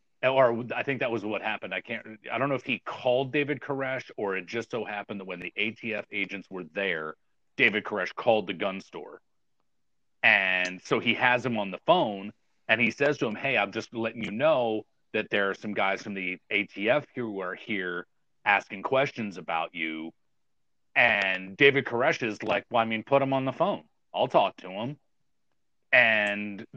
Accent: American